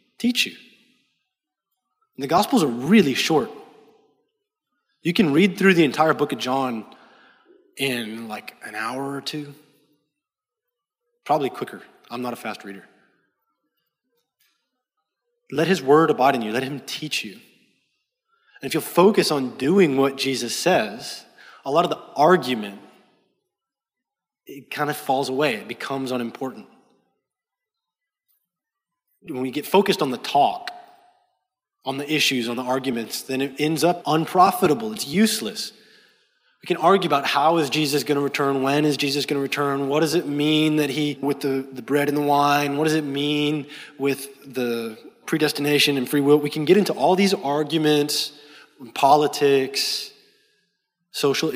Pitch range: 135-205 Hz